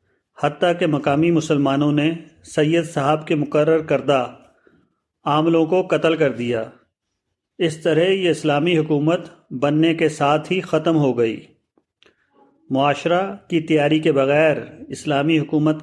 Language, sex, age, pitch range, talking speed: Urdu, male, 40-59, 145-165 Hz, 130 wpm